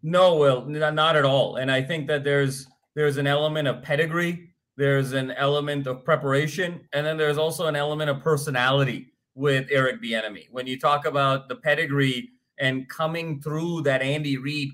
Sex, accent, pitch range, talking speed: male, American, 140-165 Hz, 175 wpm